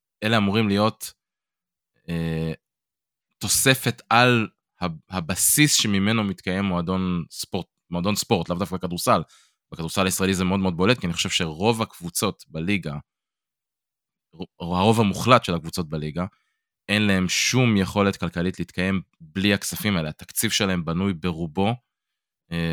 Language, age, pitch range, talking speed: Hebrew, 20-39, 85-105 Hz, 125 wpm